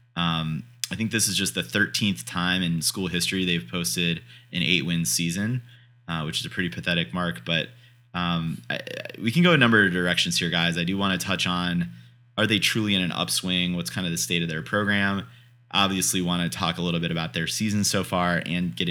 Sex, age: male, 30-49